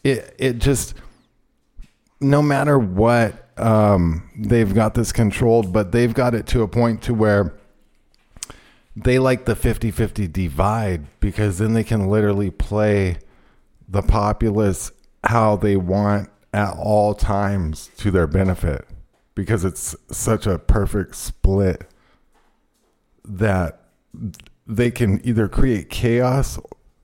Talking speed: 120 wpm